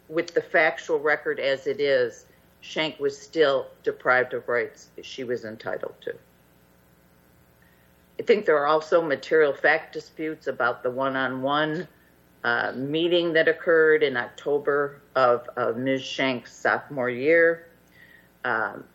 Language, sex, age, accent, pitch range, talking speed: English, female, 50-69, American, 125-160 Hz, 125 wpm